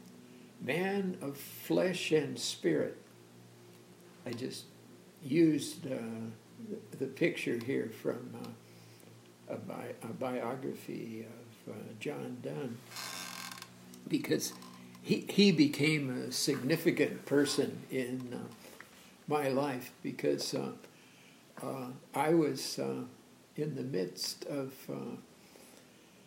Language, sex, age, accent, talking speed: English, male, 60-79, American, 105 wpm